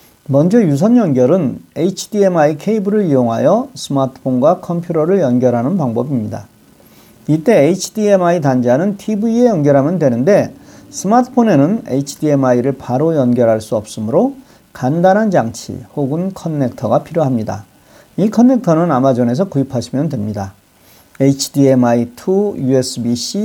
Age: 40-59